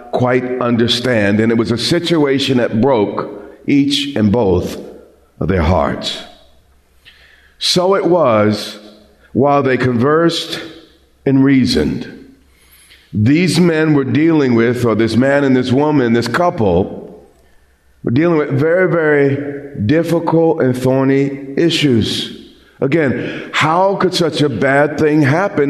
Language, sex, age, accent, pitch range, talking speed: English, male, 50-69, American, 125-165 Hz, 125 wpm